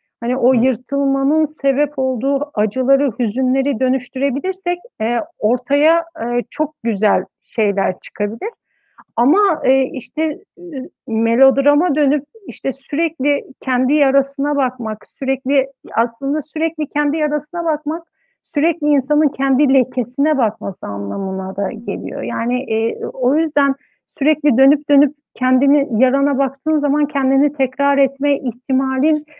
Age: 60-79